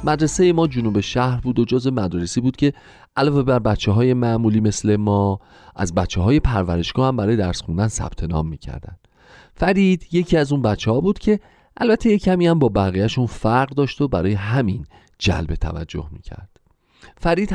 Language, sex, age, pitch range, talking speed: Persian, male, 40-59, 90-145 Hz, 160 wpm